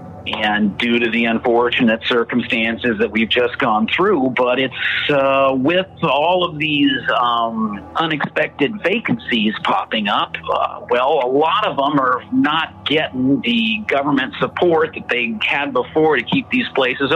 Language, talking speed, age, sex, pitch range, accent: English, 150 wpm, 50-69, male, 120-200 Hz, American